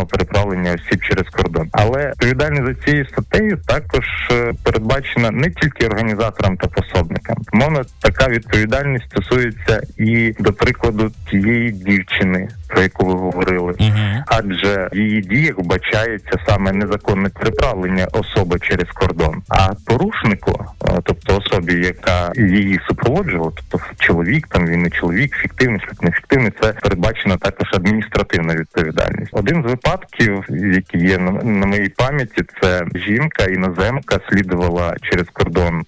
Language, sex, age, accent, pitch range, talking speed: Ukrainian, male, 30-49, native, 90-115 Hz, 125 wpm